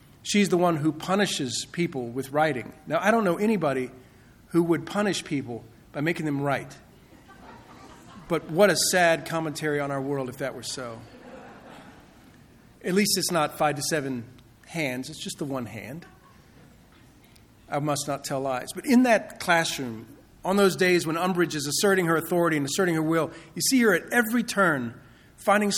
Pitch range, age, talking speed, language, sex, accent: 140-185 Hz, 40-59, 175 wpm, English, male, American